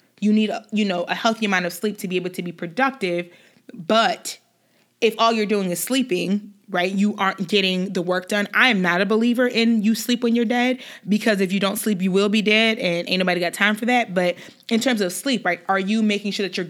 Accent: American